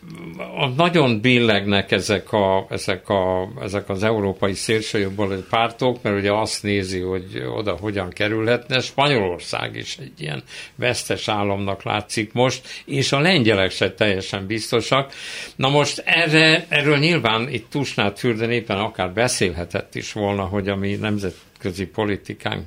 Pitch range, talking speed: 100-130 Hz, 140 wpm